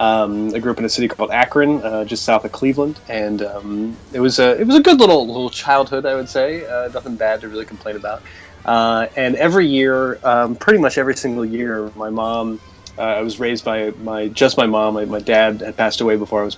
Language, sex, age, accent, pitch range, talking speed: English, male, 30-49, American, 110-130 Hz, 240 wpm